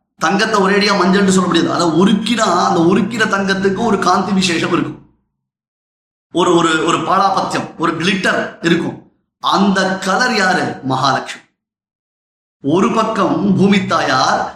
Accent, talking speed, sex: native, 120 wpm, male